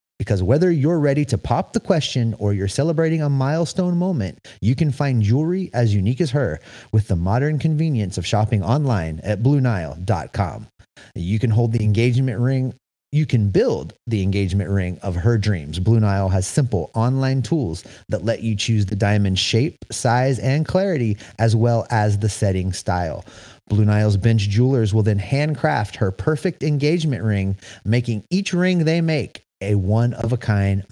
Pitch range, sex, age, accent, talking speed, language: 105-140 Hz, male, 30-49, American, 170 wpm, English